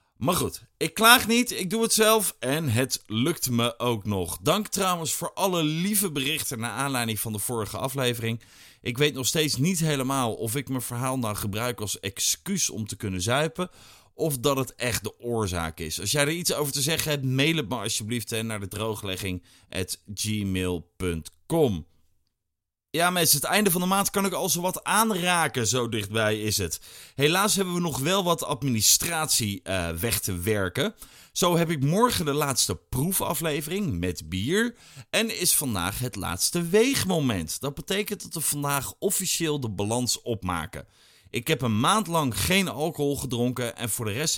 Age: 30-49